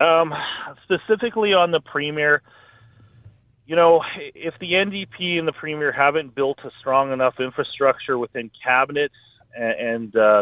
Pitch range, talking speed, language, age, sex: 115-145 Hz, 140 wpm, English, 40-59, male